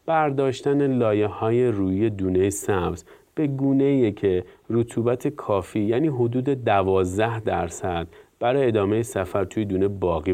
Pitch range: 95-120 Hz